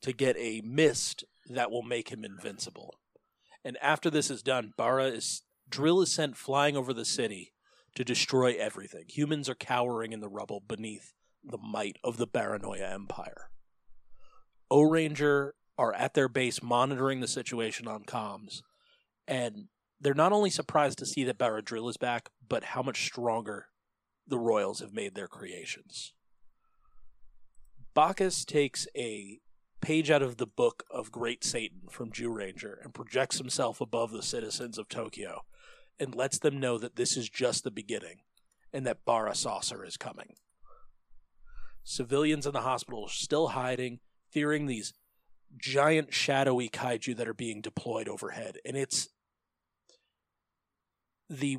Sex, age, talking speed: male, 30-49, 150 wpm